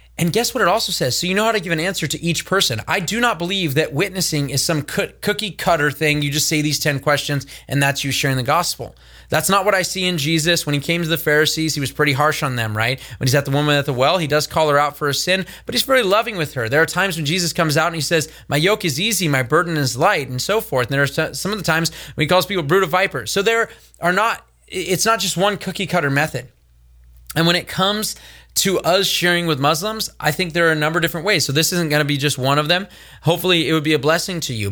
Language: English